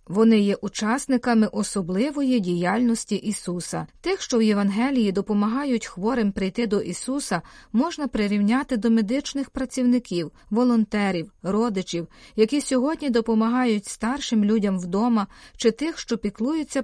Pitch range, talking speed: 205-250 Hz, 115 wpm